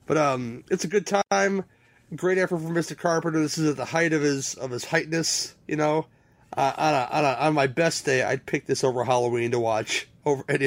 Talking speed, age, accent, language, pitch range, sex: 230 wpm, 30-49, American, English, 120-160 Hz, male